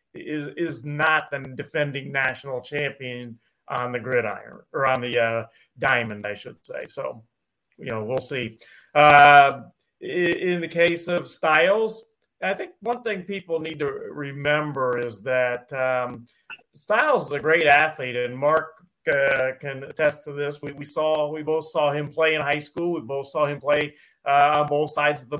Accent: American